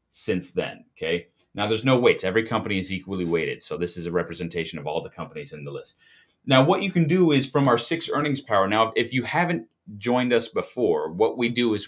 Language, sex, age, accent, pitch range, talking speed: English, male, 30-49, American, 95-125 Hz, 230 wpm